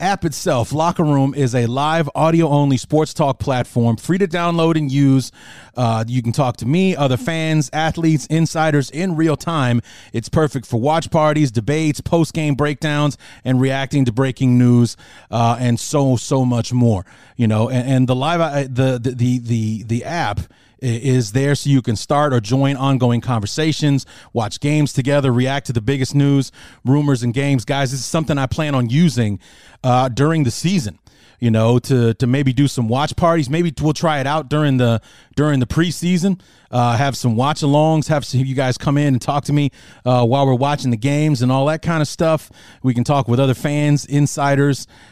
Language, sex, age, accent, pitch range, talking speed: English, male, 30-49, American, 125-150 Hz, 195 wpm